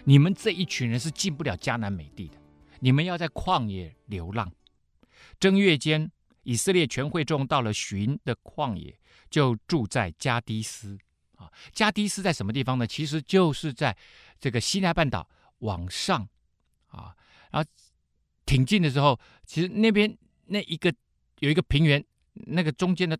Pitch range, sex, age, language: 100-155 Hz, male, 50-69, Chinese